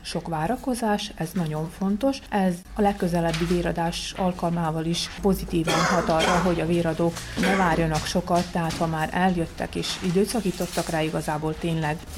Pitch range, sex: 165-195 Hz, female